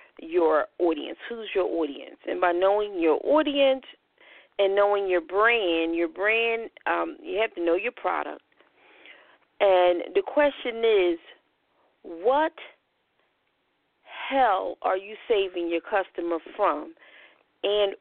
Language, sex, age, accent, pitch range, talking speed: English, female, 40-59, American, 175-285 Hz, 120 wpm